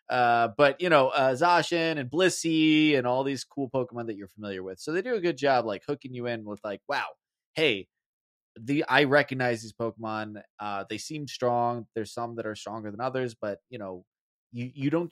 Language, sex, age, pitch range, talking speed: English, male, 20-39, 110-135 Hz, 210 wpm